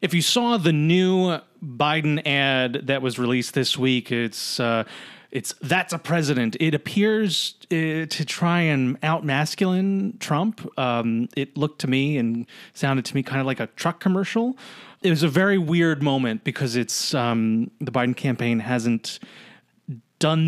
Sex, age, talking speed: male, 30-49, 160 wpm